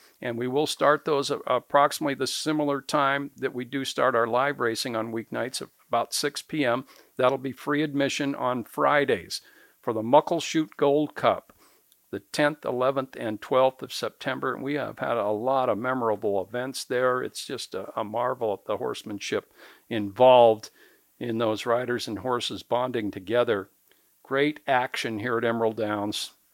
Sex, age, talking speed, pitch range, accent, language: male, 60-79, 160 wpm, 115-150 Hz, American, English